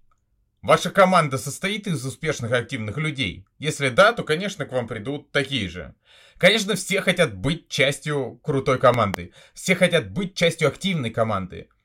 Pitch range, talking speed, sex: 120-175 Hz, 150 wpm, male